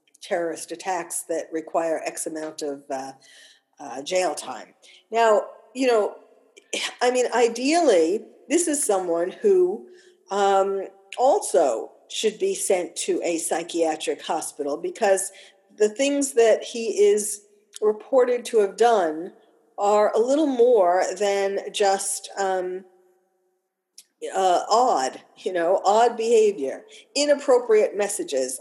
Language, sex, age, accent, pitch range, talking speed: English, female, 50-69, American, 195-315 Hz, 115 wpm